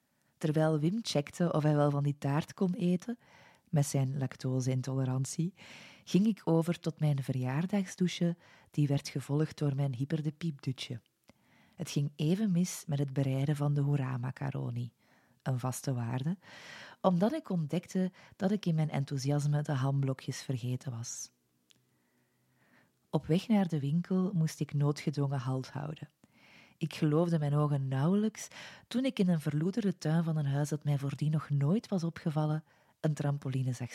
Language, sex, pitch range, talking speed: Dutch, female, 135-165 Hz, 150 wpm